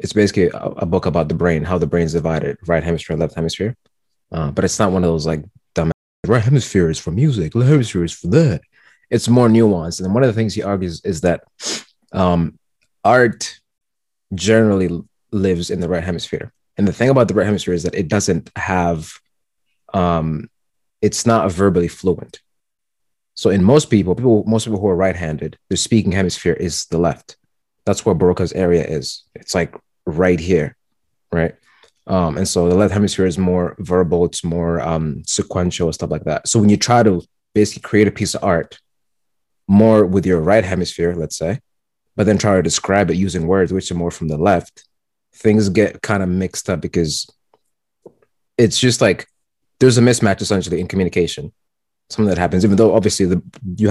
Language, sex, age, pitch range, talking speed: English, male, 30-49, 85-105 Hz, 190 wpm